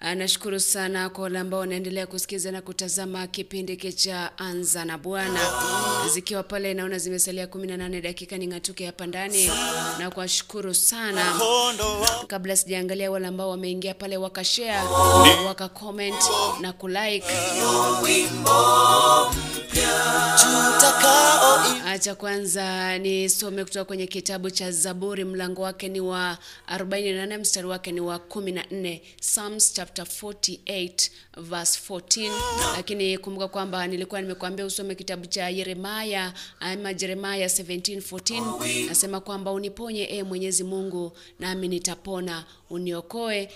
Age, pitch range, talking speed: 20-39, 180-195 Hz, 115 wpm